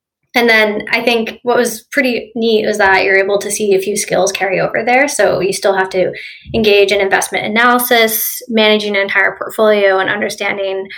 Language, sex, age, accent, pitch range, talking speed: English, female, 10-29, American, 200-235 Hz, 190 wpm